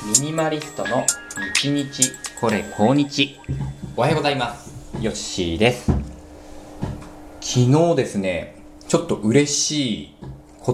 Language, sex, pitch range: Japanese, male, 95-150 Hz